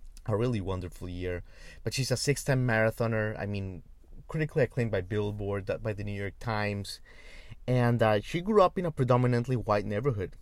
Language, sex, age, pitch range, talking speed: English, male, 30-49, 100-120 Hz, 175 wpm